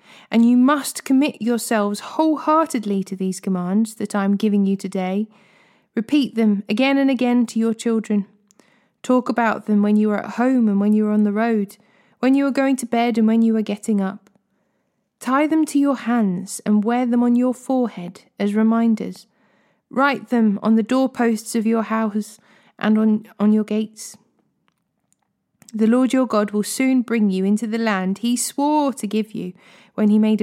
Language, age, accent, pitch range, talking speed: English, 20-39, British, 210-245 Hz, 185 wpm